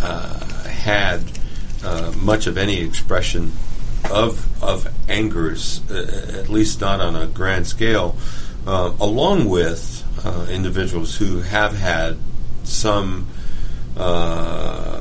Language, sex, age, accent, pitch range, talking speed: English, male, 50-69, American, 85-105 Hz, 110 wpm